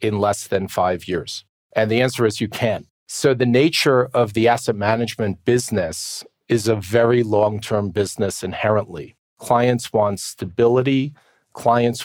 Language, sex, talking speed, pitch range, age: English, male, 145 wpm, 105-125 Hz, 40-59